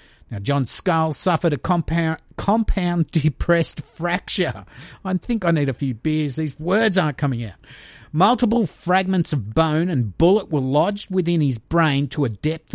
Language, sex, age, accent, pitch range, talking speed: English, male, 50-69, Australian, 135-185 Hz, 165 wpm